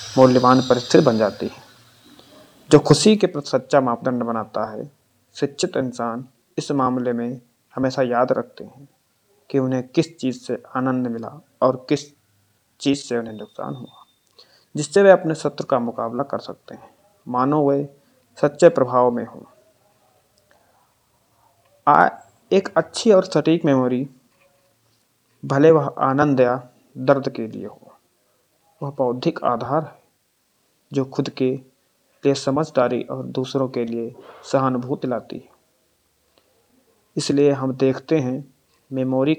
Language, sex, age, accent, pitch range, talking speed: Hindi, male, 30-49, native, 125-140 Hz, 130 wpm